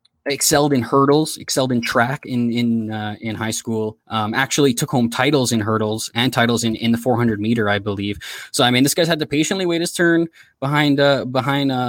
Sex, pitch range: male, 110-135 Hz